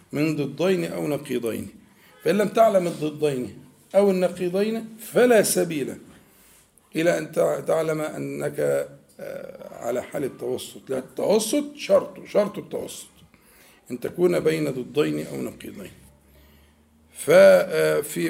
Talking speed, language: 100 wpm, Arabic